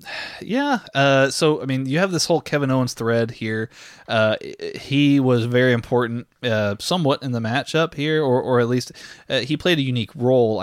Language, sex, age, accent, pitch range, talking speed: English, male, 20-39, American, 110-140 Hz, 190 wpm